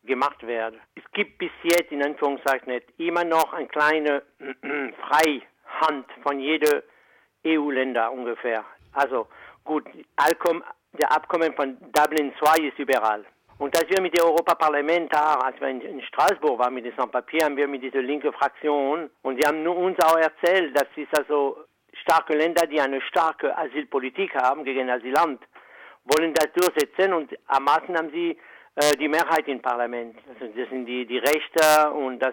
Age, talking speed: 60-79, 160 wpm